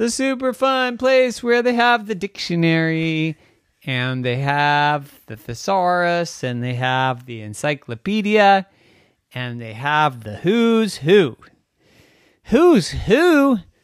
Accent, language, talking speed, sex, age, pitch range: American, English, 115 wpm, male, 30-49, 125-195 Hz